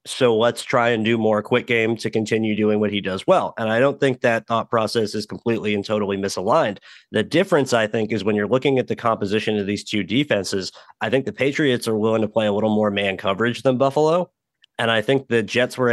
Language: English